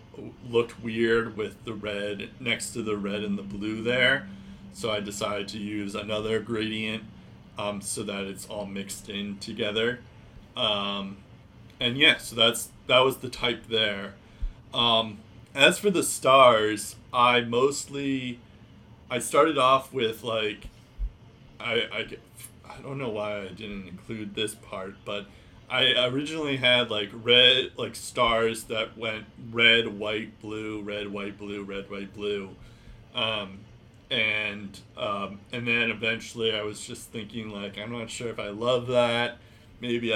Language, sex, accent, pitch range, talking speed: English, male, American, 105-120 Hz, 150 wpm